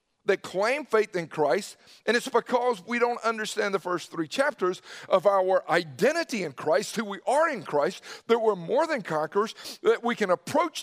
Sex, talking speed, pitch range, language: male, 190 wpm, 165-240 Hz, English